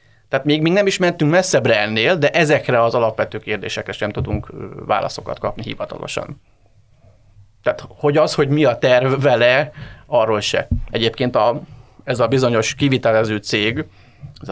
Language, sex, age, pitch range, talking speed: Hungarian, male, 30-49, 110-140 Hz, 150 wpm